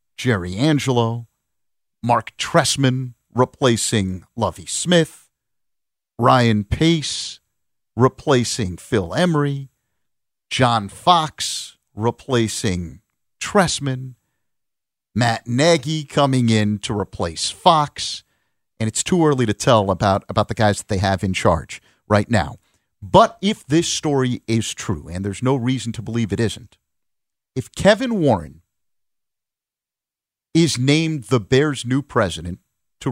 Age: 50-69